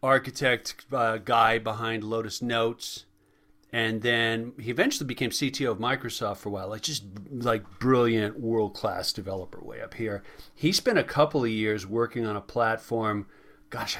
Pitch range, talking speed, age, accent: 110-135 Hz, 160 wpm, 40-59, American